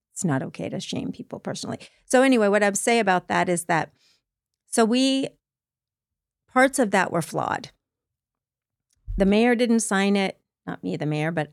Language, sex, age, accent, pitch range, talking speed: English, female, 40-59, American, 165-215 Hz, 170 wpm